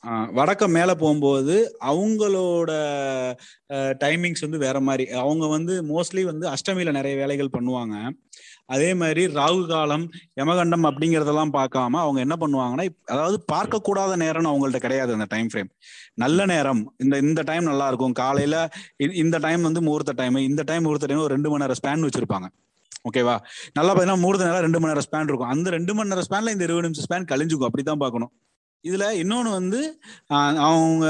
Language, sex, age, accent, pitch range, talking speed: Tamil, male, 30-49, native, 140-175 Hz, 165 wpm